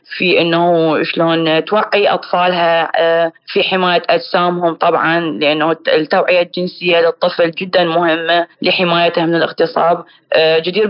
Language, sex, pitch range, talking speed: Arabic, female, 165-200 Hz, 105 wpm